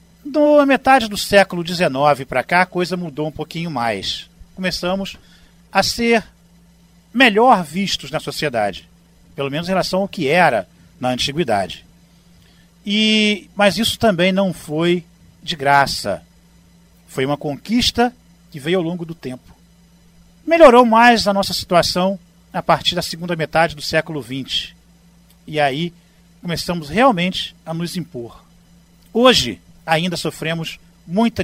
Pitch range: 160-190 Hz